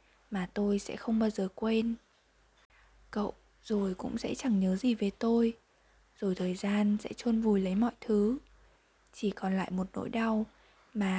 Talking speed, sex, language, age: 170 wpm, female, Vietnamese, 10-29